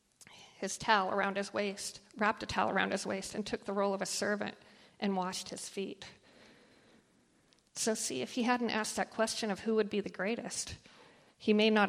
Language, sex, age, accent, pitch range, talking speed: English, female, 40-59, American, 195-220 Hz, 195 wpm